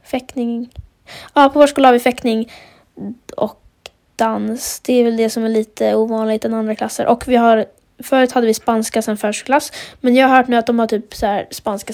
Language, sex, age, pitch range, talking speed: Swedish, female, 20-39, 230-265 Hz, 210 wpm